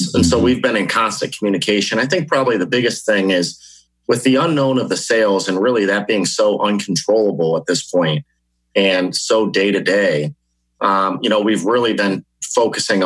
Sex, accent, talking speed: male, American, 185 wpm